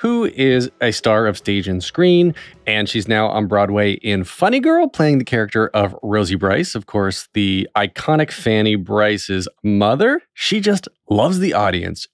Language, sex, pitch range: English, male, 95-130 Hz